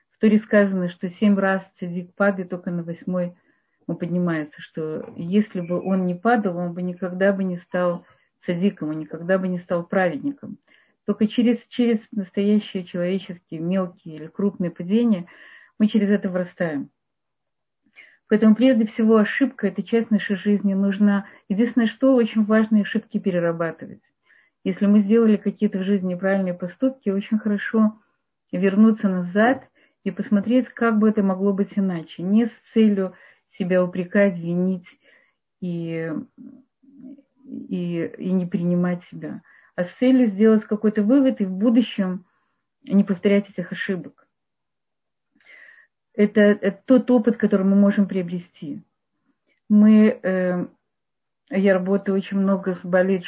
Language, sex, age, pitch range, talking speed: Russian, female, 40-59, 180-220 Hz, 135 wpm